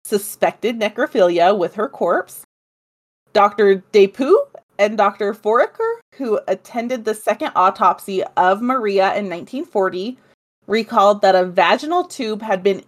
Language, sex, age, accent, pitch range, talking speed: English, female, 30-49, American, 185-235 Hz, 120 wpm